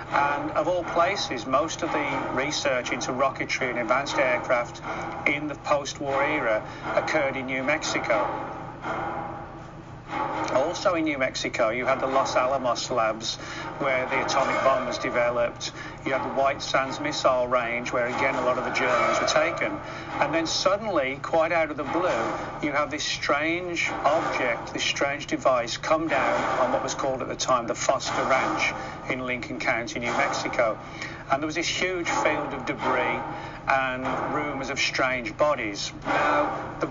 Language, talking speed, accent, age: English, 165 wpm, British, 40-59